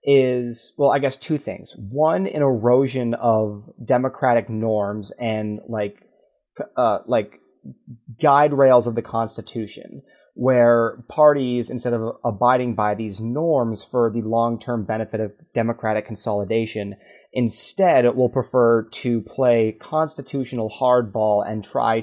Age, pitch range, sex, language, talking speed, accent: 30-49, 110-125 Hz, male, English, 125 wpm, American